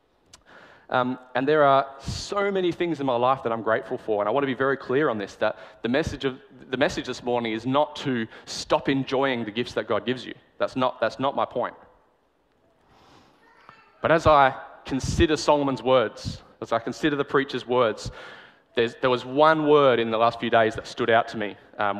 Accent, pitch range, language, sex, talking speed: Australian, 115-145 Hz, English, male, 205 wpm